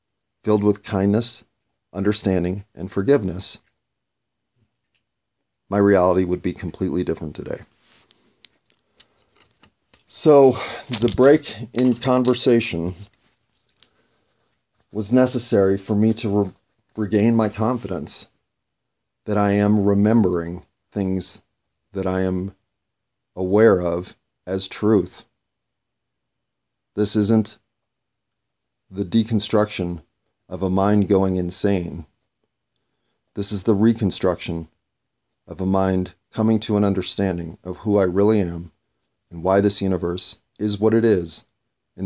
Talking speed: 105 wpm